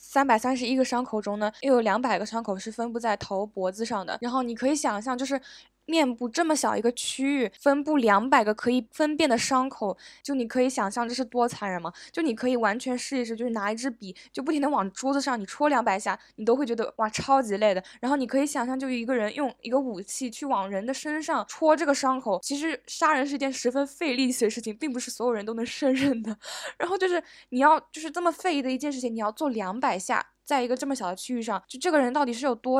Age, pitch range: 10-29, 215-275 Hz